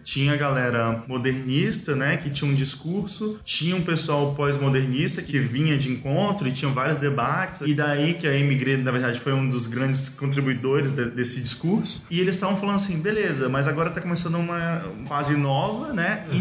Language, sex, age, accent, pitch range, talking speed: Portuguese, male, 20-39, Brazilian, 130-170 Hz, 185 wpm